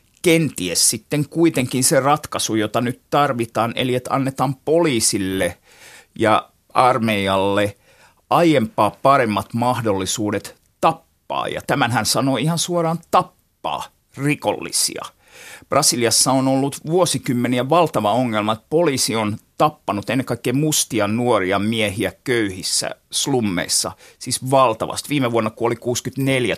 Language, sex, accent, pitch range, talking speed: Finnish, male, native, 110-140 Hz, 110 wpm